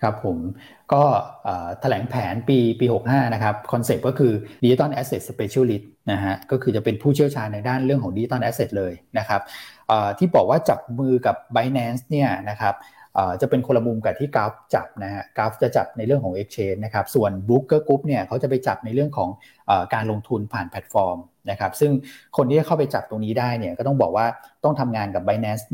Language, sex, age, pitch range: Thai, male, 20-39, 105-135 Hz